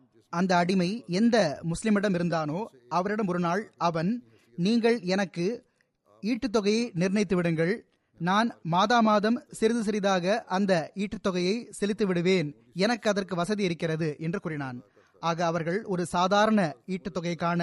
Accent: native